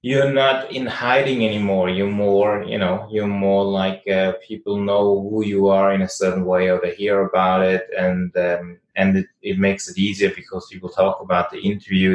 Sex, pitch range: male, 95-105 Hz